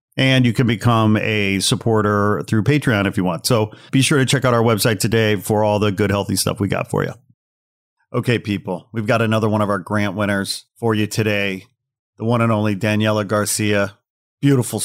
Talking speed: 200 wpm